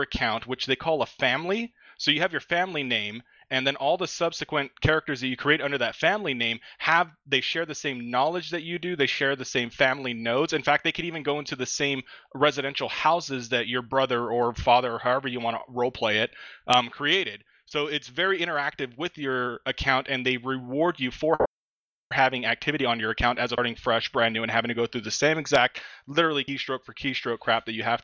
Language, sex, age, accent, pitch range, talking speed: English, male, 30-49, American, 115-150 Hz, 220 wpm